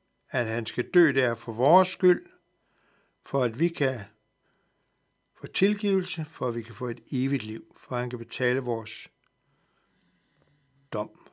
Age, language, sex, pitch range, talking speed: 60-79, Danish, male, 130-190 Hz, 155 wpm